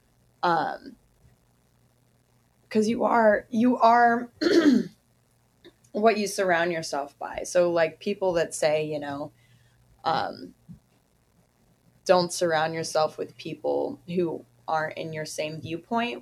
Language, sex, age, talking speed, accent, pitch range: English, female, 20-39, 110 wpm, American, 145-180 Hz